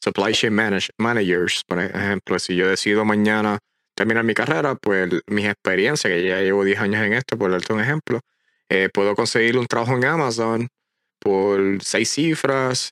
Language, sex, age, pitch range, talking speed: English, male, 20-39, 100-120 Hz, 170 wpm